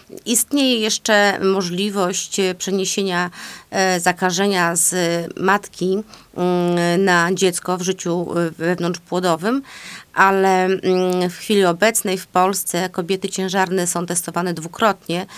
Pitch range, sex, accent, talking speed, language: 170-190 Hz, female, native, 90 wpm, Polish